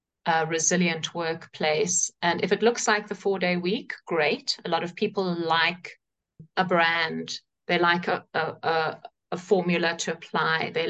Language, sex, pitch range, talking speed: Dutch, female, 170-200 Hz, 155 wpm